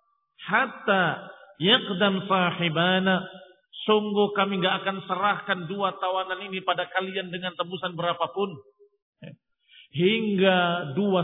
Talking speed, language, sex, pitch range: 95 wpm, Indonesian, male, 160-205 Hz